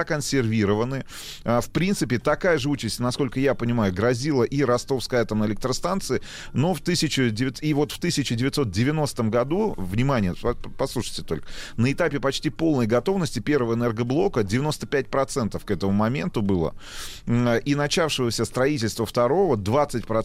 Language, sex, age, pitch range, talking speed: Russian, male, 30-49, 110-140 Hz, 120 wpm